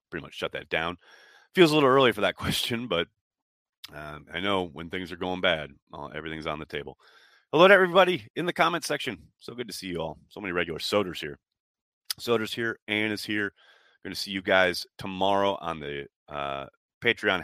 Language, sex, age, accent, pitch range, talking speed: English, male, 30-49, American, 85-125 Hz, 200 wpm